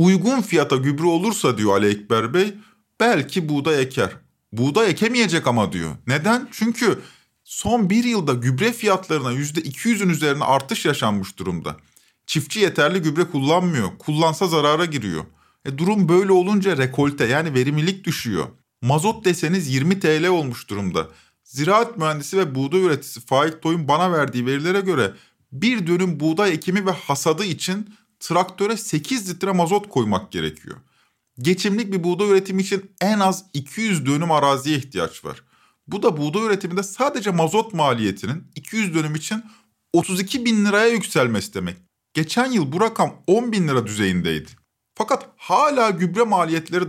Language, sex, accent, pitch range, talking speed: Turkish, male, native, 140-195 Hz, 140 wpm